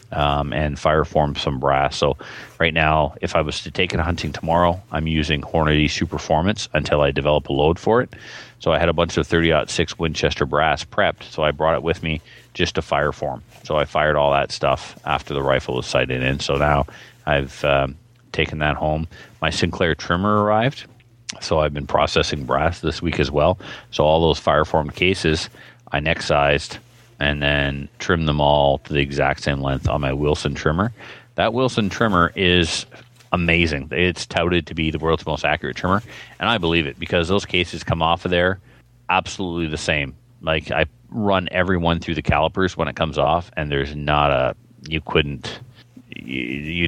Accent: American